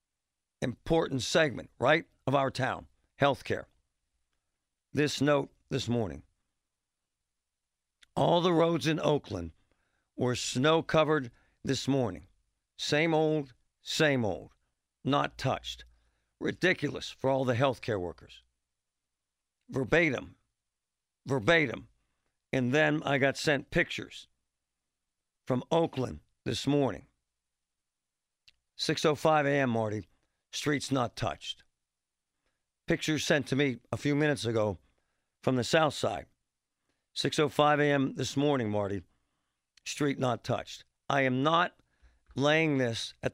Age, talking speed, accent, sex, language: 60-79, 105 wpm, American, male, English